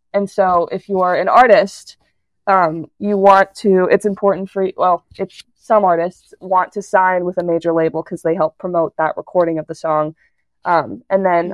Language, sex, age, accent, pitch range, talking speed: English, female, 20-39, American, 170-195 Hz, 190 wpm